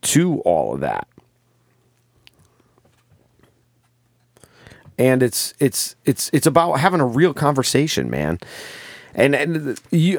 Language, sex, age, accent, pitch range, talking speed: English, male, 30-49, American, 105-145 Hz, 105 wpm